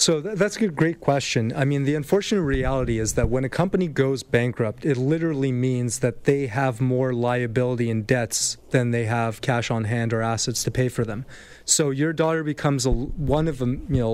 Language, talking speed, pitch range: English, 195 wpm, 125-145 Hz